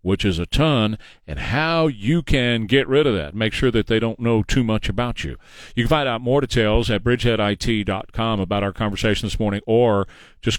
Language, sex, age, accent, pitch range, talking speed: English, male, 40-59, American, 110-155 Hz, 210 wpm